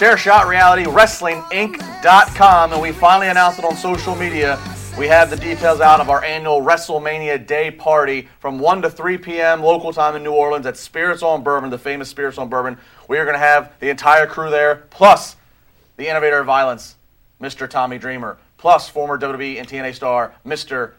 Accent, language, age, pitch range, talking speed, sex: American, English, 30-49, 125-160 Hz, 180 wpm, male